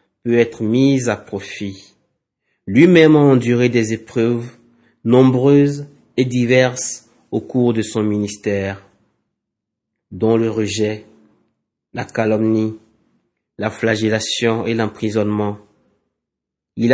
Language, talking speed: French, 95 wpm